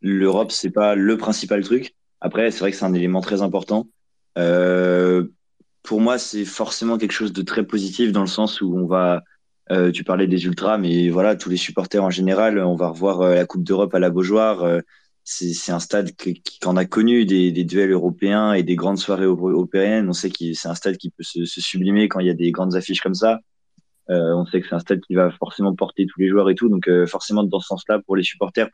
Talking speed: 245 wpm